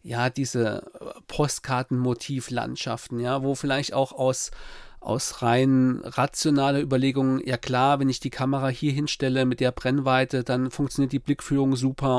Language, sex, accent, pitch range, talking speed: German, male, German, 130-175 Hz, 145 wpm